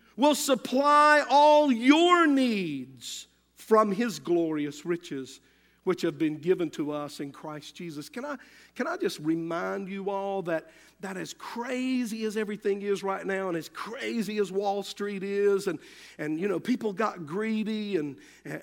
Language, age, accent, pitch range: English, 50-69, American, 185-240 Hz